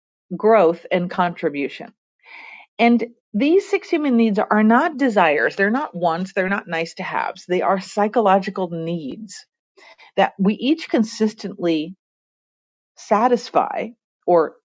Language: English